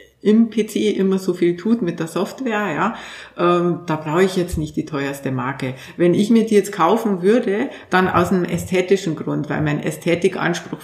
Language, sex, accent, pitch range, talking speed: German, female, Austrian, 165-195 Hz, 190 wpm